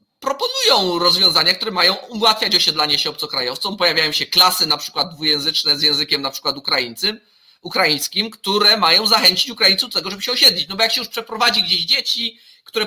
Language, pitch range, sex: Polish, 175-220 Hz, male